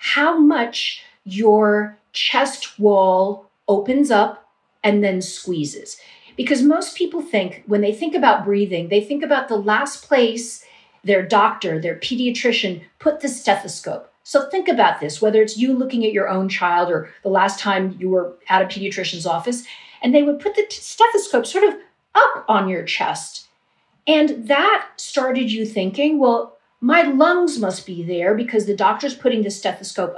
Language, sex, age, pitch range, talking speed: English, female, 40-59, 190-275 Hz, 165 wpm